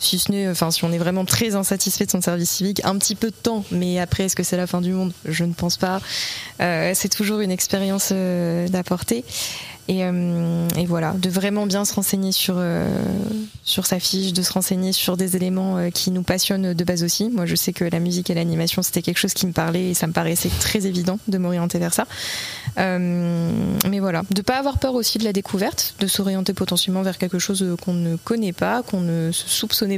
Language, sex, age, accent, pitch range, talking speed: French, female, 20-39, French, 180-200 Hz, 230 wpm